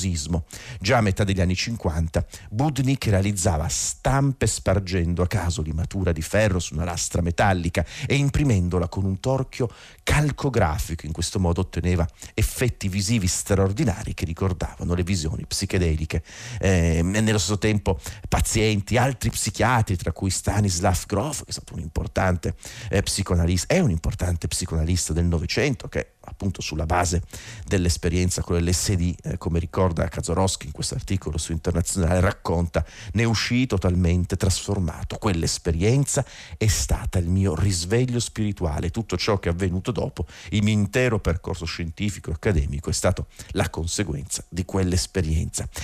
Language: Italian